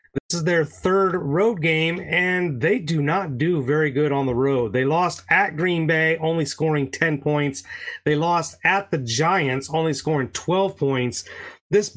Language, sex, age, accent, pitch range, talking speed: English, male, 30-49, American, 145-180 Hz, 175 wpm